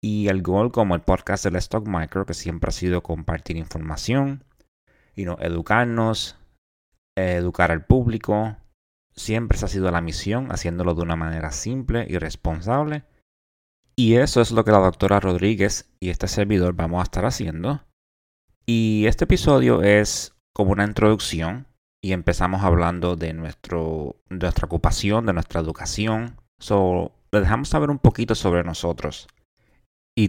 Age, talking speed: 30-49, 145 wpm